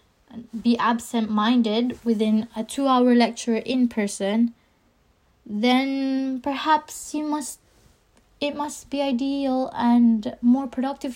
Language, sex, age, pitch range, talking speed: English, female, 20-39, 210-265 Hz, 100 wpm